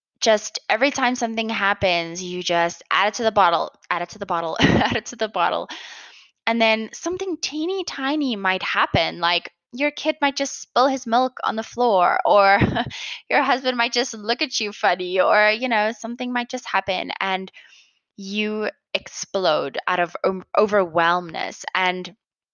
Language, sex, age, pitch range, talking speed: English, female, 10-29, 175-240 Hz, 170 wpm